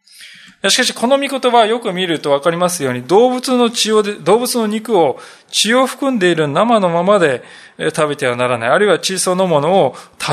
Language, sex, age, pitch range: Japanese, male, 20-39, 145-225 Hz